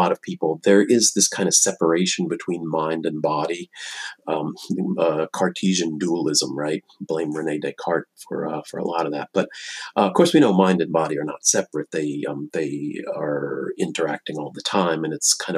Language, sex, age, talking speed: English, male, 40-59, 195 wpm